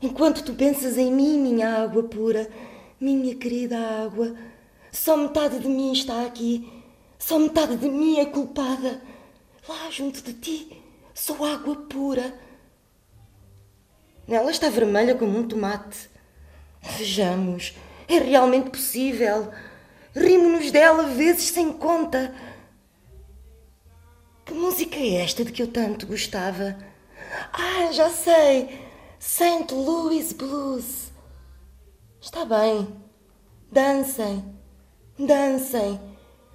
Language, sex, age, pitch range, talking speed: Portuguese, female, 20-39, 215-295 Hz, 105 wpm